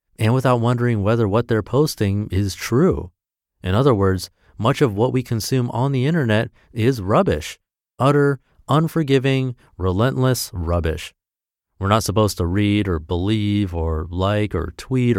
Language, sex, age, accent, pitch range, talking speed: English, male, 30-49, American, 95-130 Hz, 145 wpm